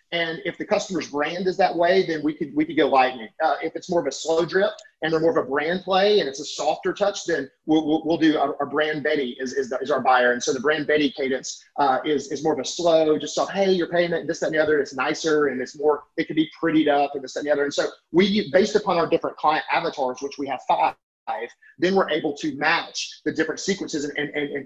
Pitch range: 145-180 Hz